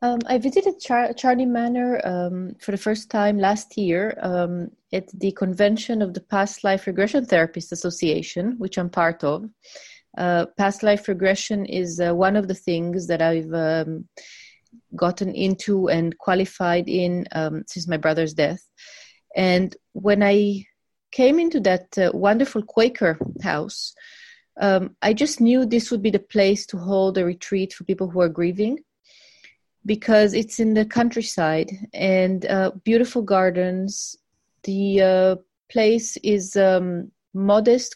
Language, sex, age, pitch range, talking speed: English, female, 30-49, 180-215 Hz, 145 wpm